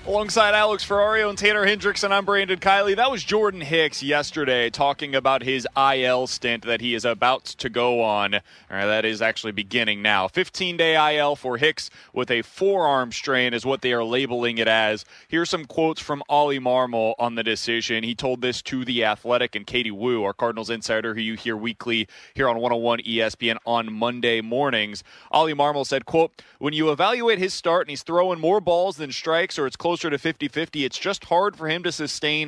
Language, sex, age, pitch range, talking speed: English, male, 30-49, 120-160 Hz, 205 wpm